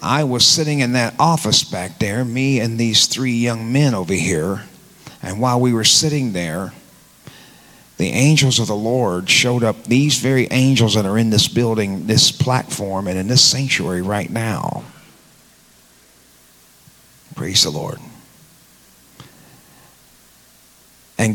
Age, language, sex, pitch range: 40-59, English, male, 100-130 Hz